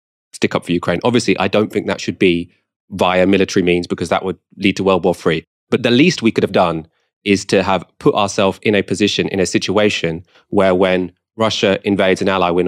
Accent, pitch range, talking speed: British, 90-105 Hz, 225 wpm